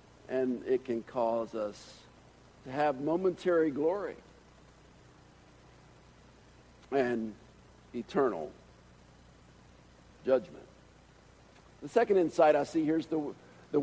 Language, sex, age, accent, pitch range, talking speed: English, male, 60-79, American, 130-190 Hz, 90 wpm